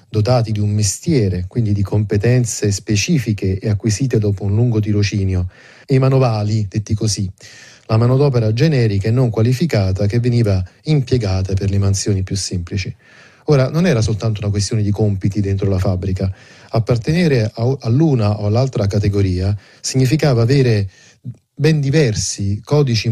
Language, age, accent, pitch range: Italian, 30-49, native, 105-130 Hz